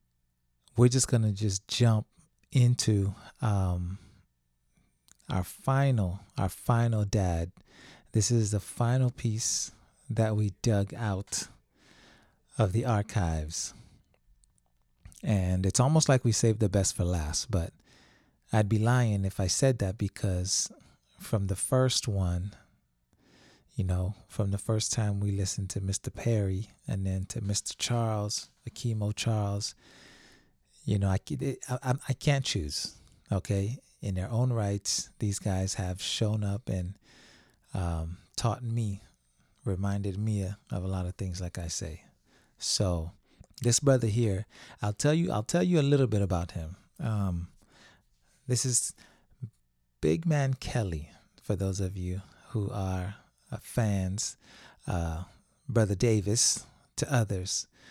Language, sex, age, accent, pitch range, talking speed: English, male, 30-49, American, 95-115 Hz, 135 wpm